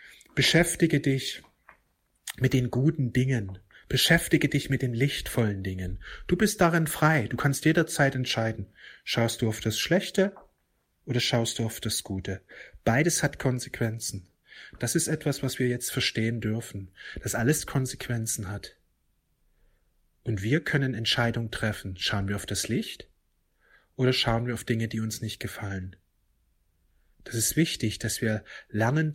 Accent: German